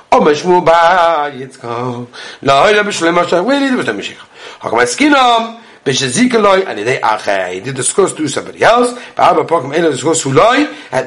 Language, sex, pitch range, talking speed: English, male, 165-255 Hz, 60 wpm